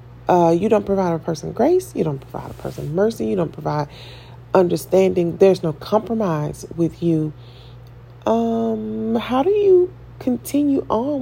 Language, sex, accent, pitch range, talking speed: English, female, American, 120-195 Hz, 150 wpm